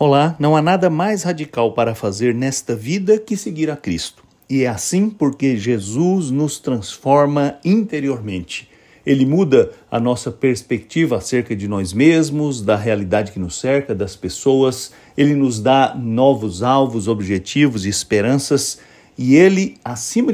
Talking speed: 145 wpm